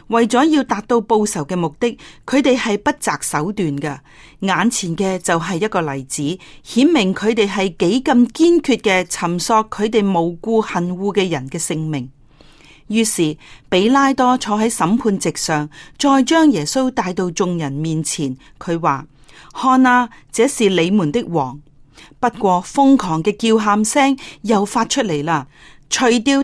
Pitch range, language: 160-240 Hz, Chinese